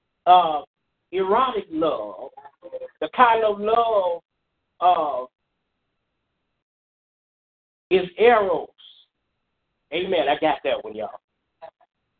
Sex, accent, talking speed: male, American, 80 wpm